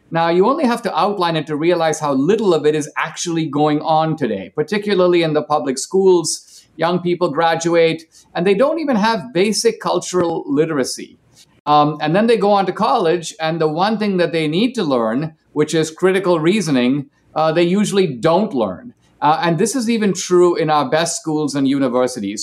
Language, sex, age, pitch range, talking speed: English, male, 50-69, 155-195 Hz, 195 wpm